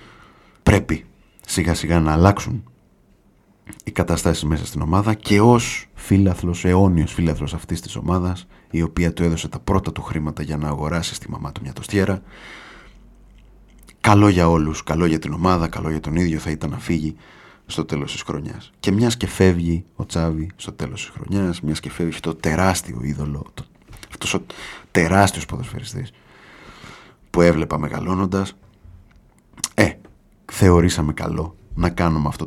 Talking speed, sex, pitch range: 150 wpm, male, 80-95 Hz